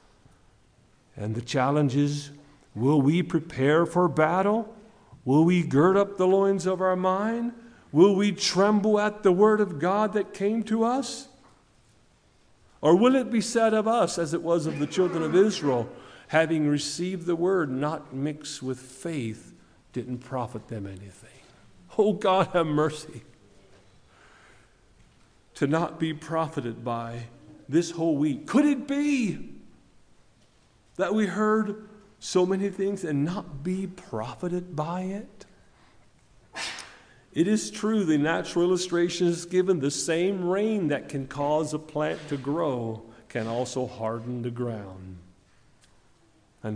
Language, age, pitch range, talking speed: English, 50-69, 130-195 Hz, 140 wpm